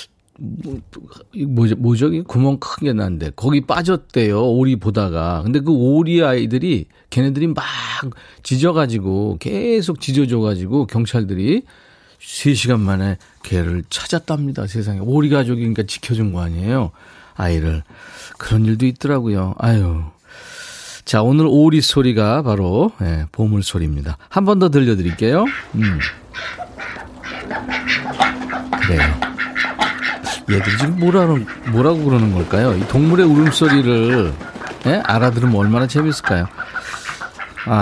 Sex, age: male, 40-59